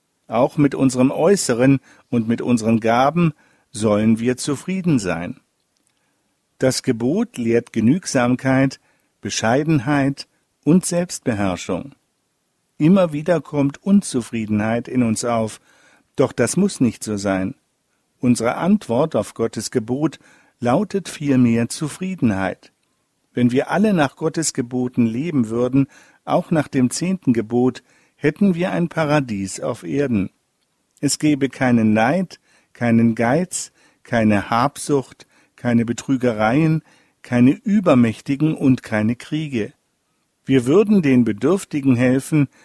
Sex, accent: male, German